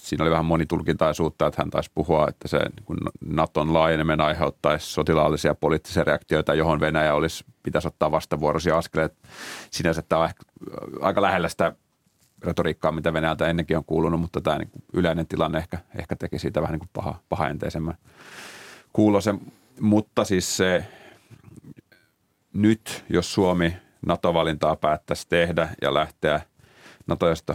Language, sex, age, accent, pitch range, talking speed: Finnish, male, 30-49, native, 80-85 Hz, 140 wpm